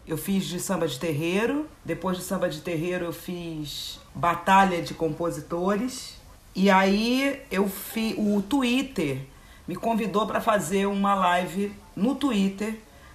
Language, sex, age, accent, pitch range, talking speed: Portuguese, female, 40-59, Brazilian, 175-240 Hz, 135 wpm